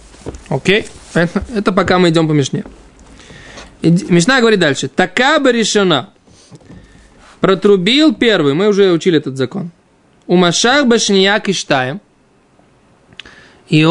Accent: native